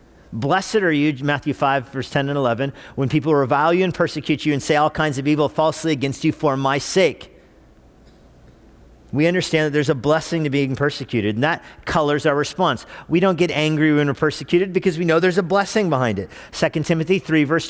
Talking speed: 205 wpm